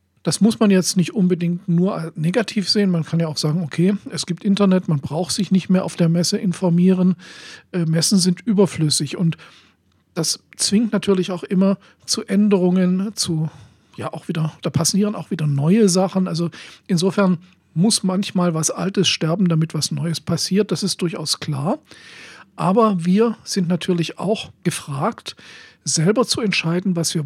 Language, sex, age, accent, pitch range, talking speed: German, male, 50-69, German, 155-195 Hz, 165 wpm